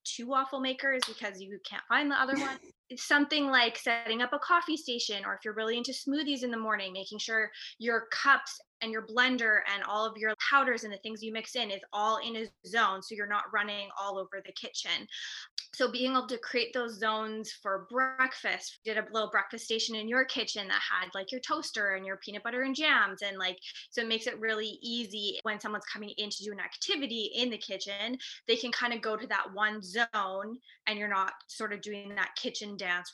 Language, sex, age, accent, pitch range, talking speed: English, female, 20-39, American, 205-240 Hz, 225 wpm